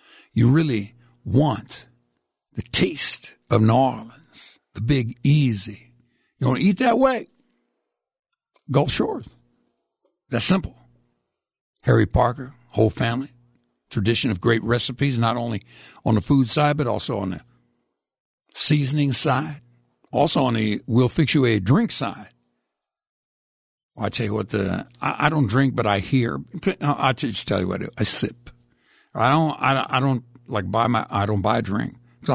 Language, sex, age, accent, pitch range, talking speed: English, male, 60-79, American, 100-155 Hz, 160 wpm